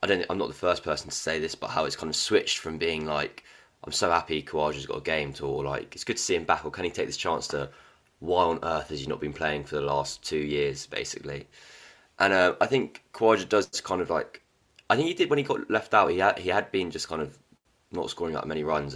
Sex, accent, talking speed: male, British, 280 wpm